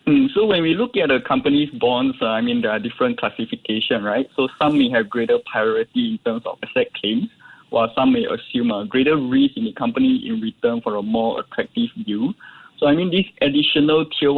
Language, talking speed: English, 210 wpm